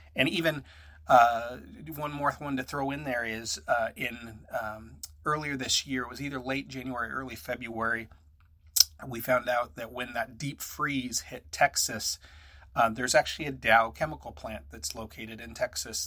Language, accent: English, American